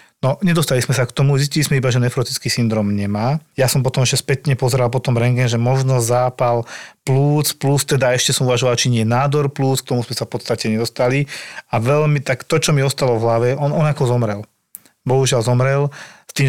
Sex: male